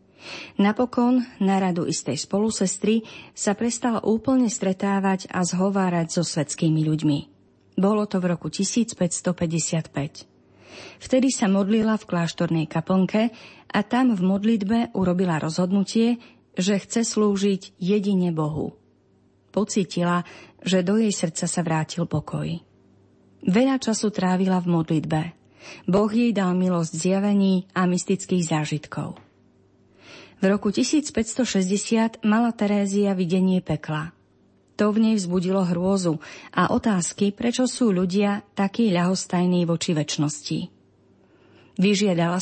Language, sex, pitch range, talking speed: Slovak, female, 170-215 Hz, 110 wpm